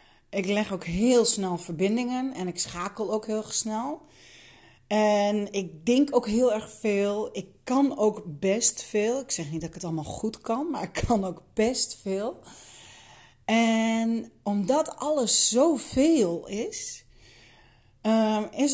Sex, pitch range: female, 180-230 Hz